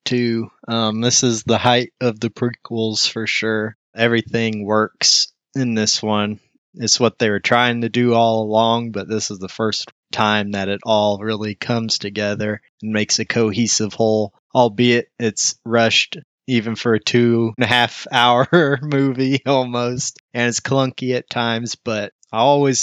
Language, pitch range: English, 105-120 Hz